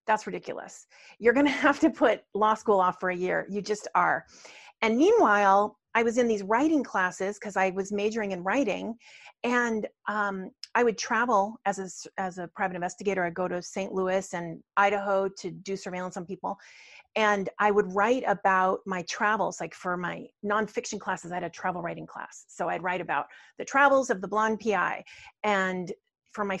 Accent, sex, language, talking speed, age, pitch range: American, female, English, 190 wpm, 40-59, 190-240 Hz